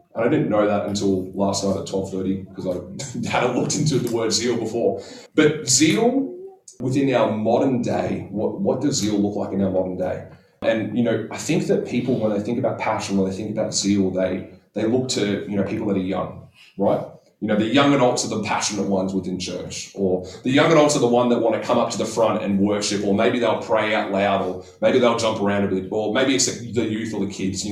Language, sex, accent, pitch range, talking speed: English, male, Australian, 100-120 Hz, 245 wpm